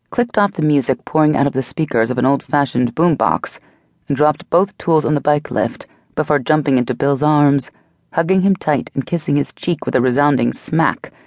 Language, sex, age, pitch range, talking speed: English, female, 30-49, 125-165 Hz, 195 wpm